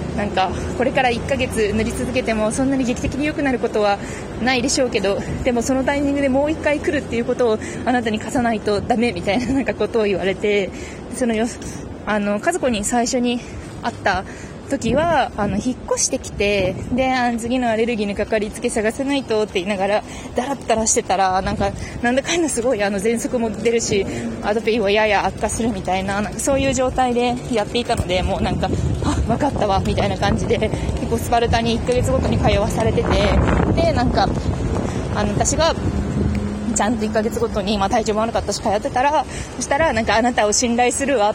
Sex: female